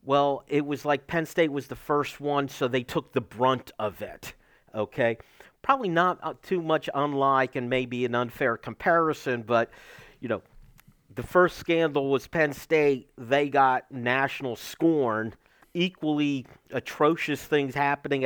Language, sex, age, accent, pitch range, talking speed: English, male, 50-69, American, 115-145 Hz, 150 wpm